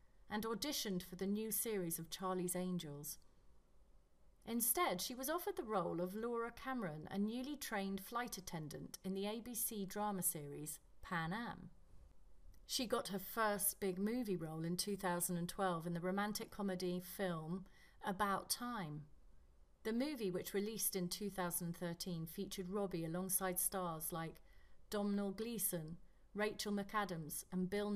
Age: 30-49